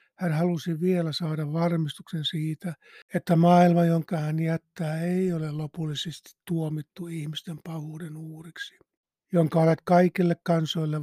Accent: native